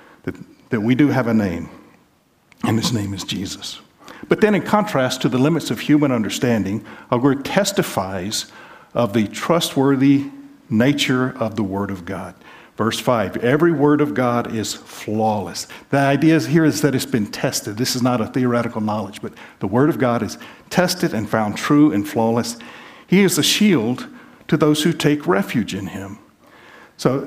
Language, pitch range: English, 120-170 Hz